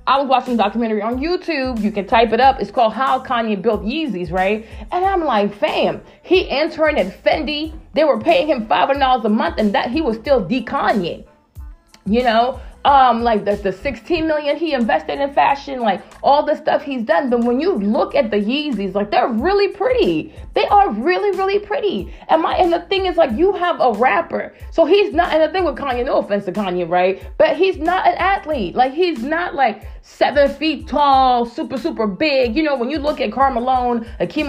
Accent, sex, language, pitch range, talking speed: American, female, English, 230-315 Hz, 215 wpm